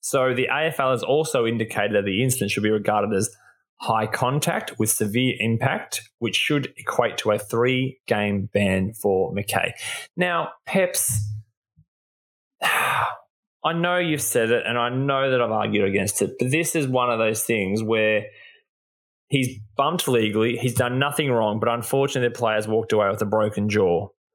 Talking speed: 170 wpm